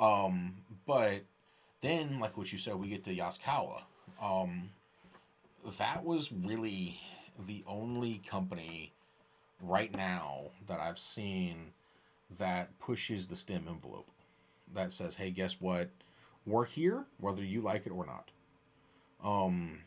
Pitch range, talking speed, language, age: 90-110 Hz, 125 wpm, English, 30-49